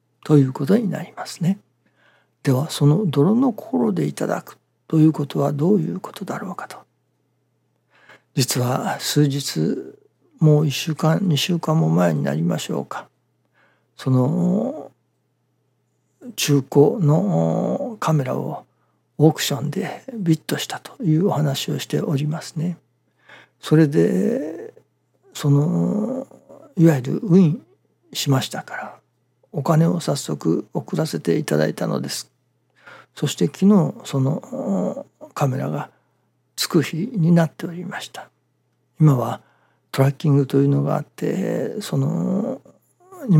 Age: 60-79